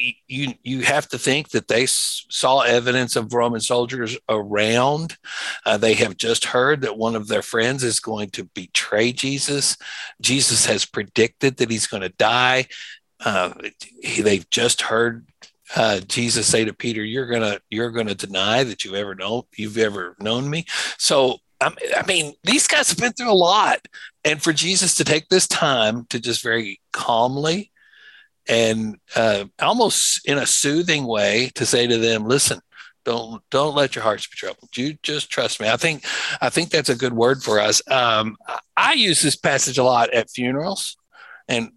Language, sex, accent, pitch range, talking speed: English, male, American, 110-135 Hz, 180 wpm